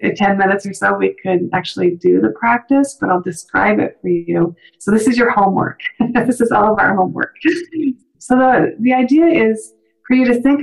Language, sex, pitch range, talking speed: English, female, 180-240 Hz, 205 wpm